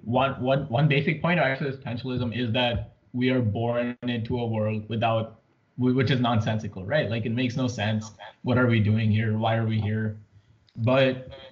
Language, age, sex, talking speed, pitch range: English, 20-39, male, 175 wpm, 110-130 Hz